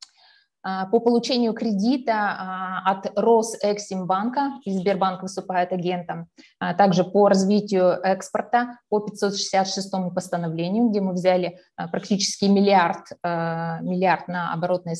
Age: 20-39